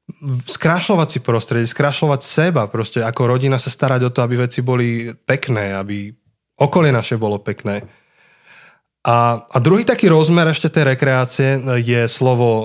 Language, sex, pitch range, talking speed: Slovak, male, 115-140 Hz, 140 wpm